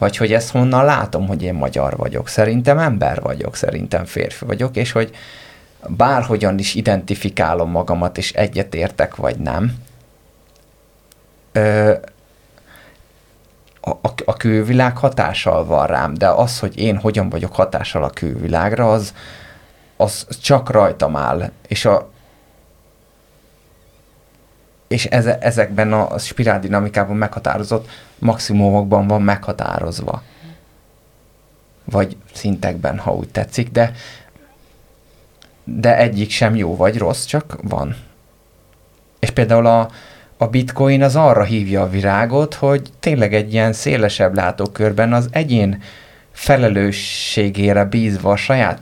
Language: Hungarian